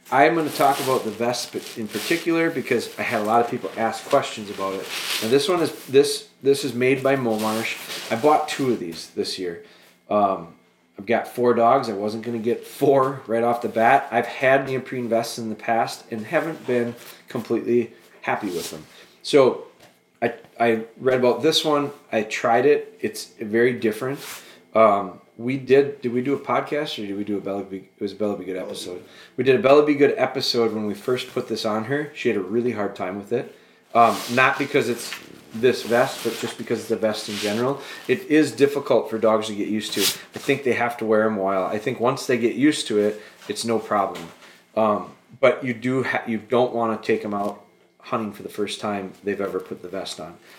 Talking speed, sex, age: 225 wpm, male, 20-39